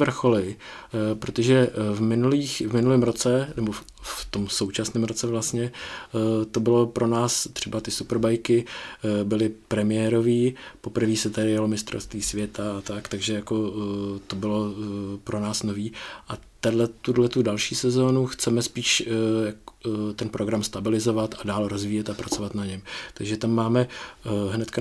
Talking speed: 145 wpm